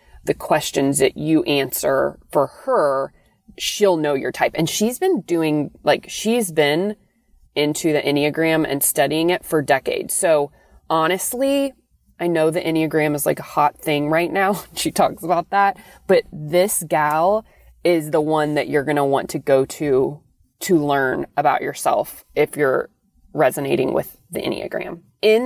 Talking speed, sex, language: 160 wpm, female, English